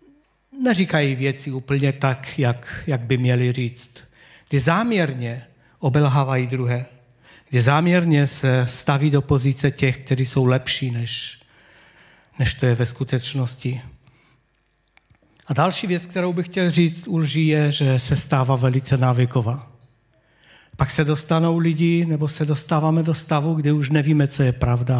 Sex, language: male, Czech